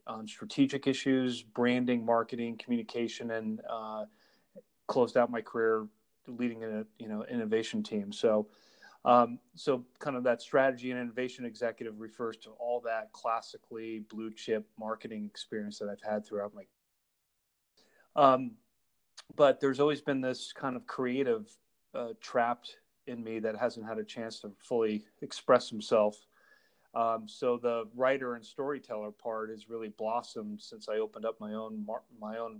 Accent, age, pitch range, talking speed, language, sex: American, 30-49, 110-125 Hz, 150 wpm, English, male